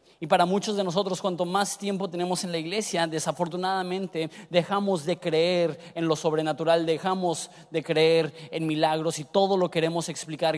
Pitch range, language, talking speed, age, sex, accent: 170-215 Hz, Spanish, 165 wpm, 30-49, male, Mexican